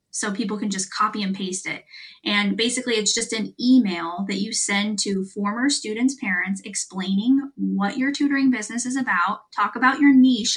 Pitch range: 200-250 Hz